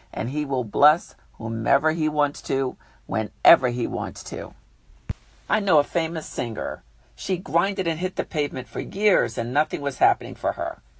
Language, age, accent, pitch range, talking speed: English, 50-69, American, 135-185 Hz, 170 wpm